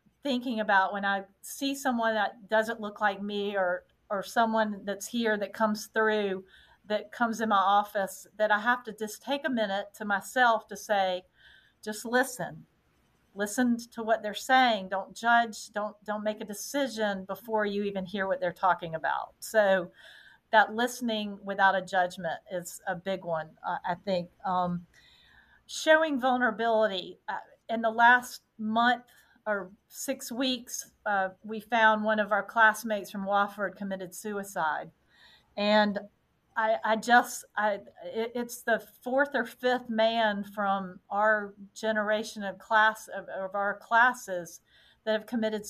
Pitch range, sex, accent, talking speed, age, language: 200-235 Hz, female, American, 150 wpm, 40-59, English